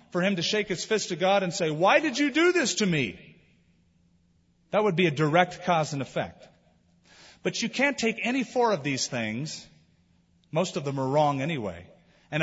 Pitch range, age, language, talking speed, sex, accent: 130-195 Hz, 40-59, English, 200 wpm, male, American